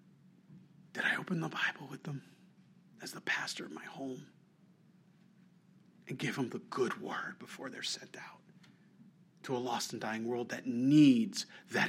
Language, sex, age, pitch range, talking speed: English, male, 40-59, 125-185 Hz, 160 wpm